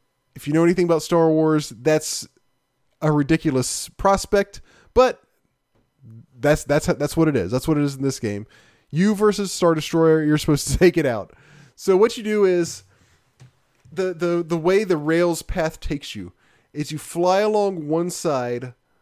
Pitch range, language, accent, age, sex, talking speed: 125-170 Hz, English, American, 20-39, male, 175 wpm